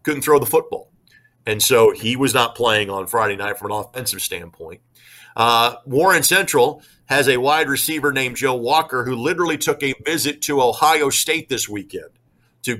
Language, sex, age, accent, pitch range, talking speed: English, male, 50-69, American, 115-155 Hz, 180 wpm